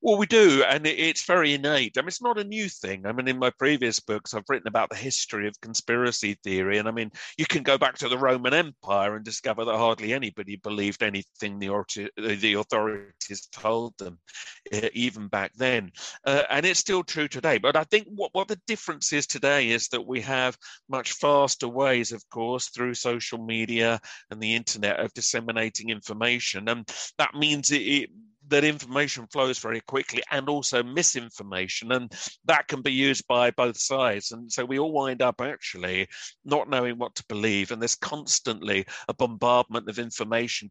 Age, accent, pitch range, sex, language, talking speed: 40-59, British, 110-140 Hz, male, English, 190 wpm